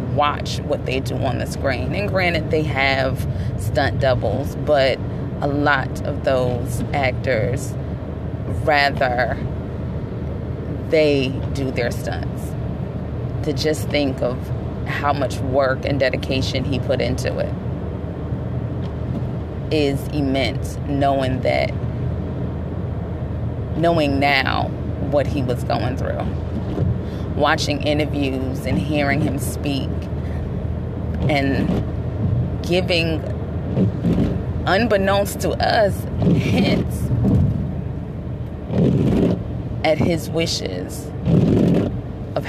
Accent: American